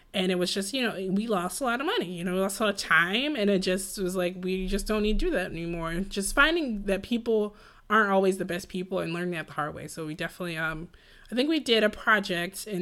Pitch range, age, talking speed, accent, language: 175-210 Hz, 20-39, 280 wpm, American, English